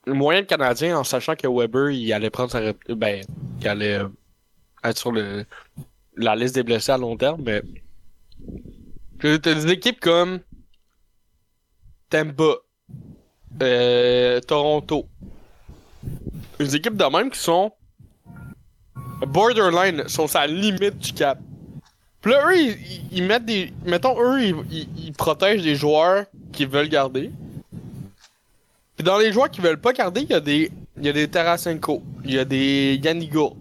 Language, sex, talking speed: French, male, 145 wpm